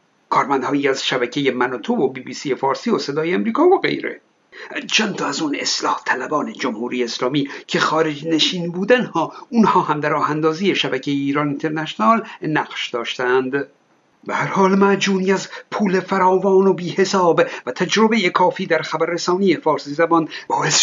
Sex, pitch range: male, 160-215 Hz